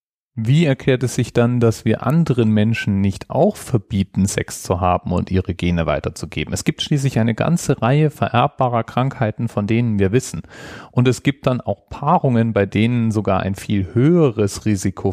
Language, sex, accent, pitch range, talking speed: German, male, German, 95-125 Hz, 175 wpm